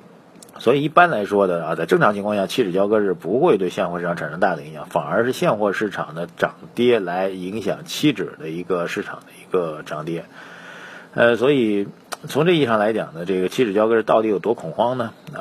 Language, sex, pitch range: Chinese, male, 95-120 Hz